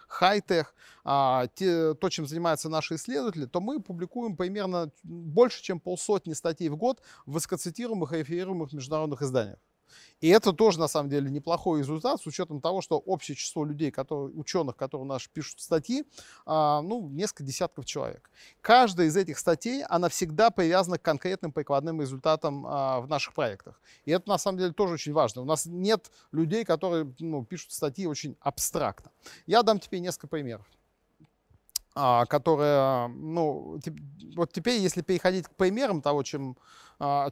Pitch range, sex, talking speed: 150-185 Hz, male, 155 wpm